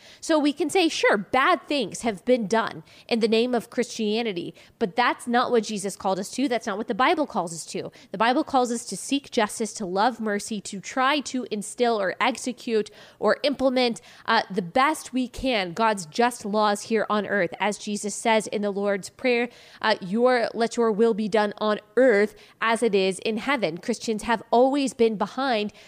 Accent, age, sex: American, 20-39, female